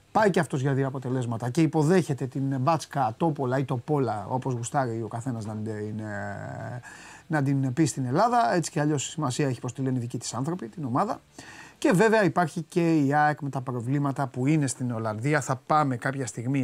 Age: 30-49